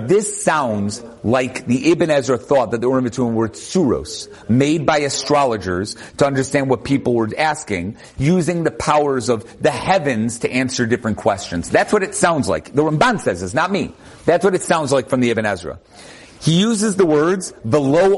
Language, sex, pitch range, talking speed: English, male, 135-215 Hz, 185 wpm